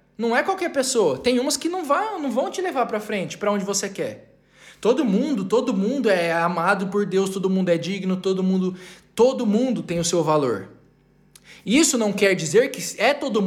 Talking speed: 195 wpm